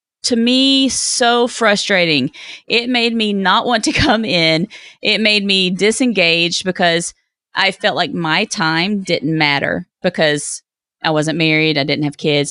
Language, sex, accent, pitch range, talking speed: English, female, American, 155-200 Hz, 155 wpm